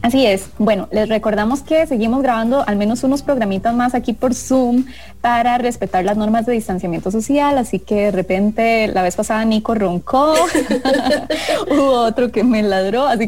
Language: English